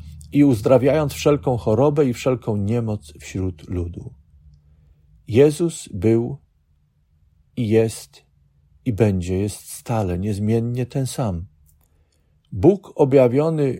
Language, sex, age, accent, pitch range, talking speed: Polish, male, 50-69, native, 80-125 Hz, 95 wpm